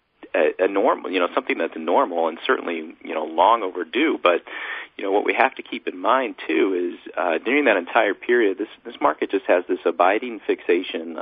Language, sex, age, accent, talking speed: English, male, 40-59, American, 210 wpm